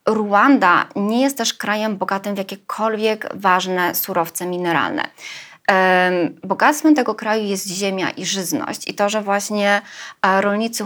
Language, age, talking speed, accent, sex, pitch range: Polish, 20-39, 125 wpm, native, female, 185-225 Hz